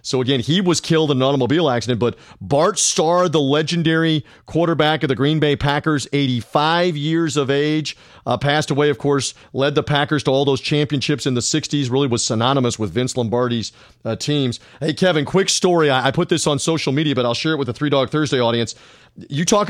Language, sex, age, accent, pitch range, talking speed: English, male, 40-59, American, 130-165 Hz, 215 wpm